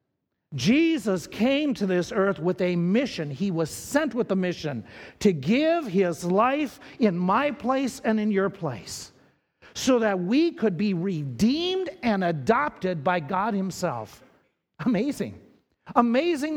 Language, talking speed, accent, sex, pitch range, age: English, 140 wpm, American, male, 185-275 Hz, 50-69